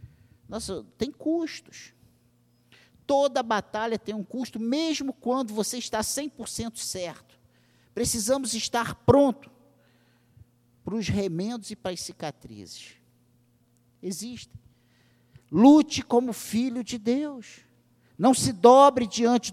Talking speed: 105 wpm